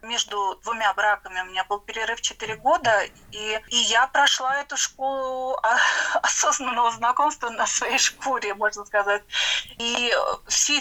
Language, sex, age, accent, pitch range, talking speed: Russian, female, 30-49, native, 215-260 Hz, 135 wpm